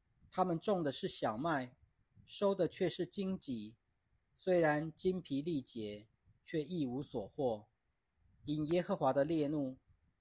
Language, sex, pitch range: Chinese, male, 120-165 Hz